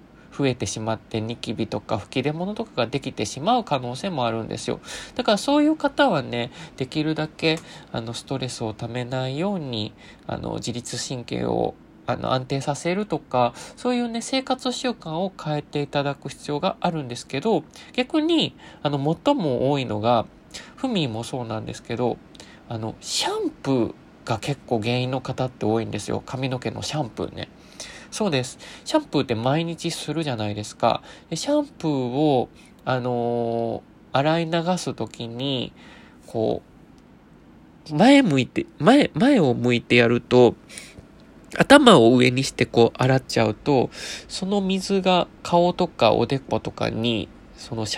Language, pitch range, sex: Japanese, 120-175 Hz, male